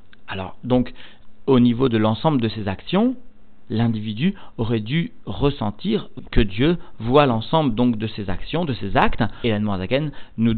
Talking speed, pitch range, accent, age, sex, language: 155 wpm, 105-130 Hz, French, 40-59, male, French